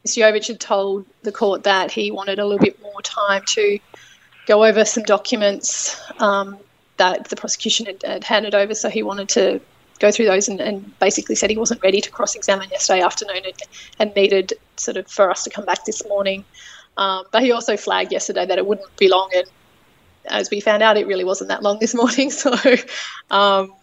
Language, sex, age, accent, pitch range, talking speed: English, female, 20-39, Australian, 195-225 Hz, 205 wpm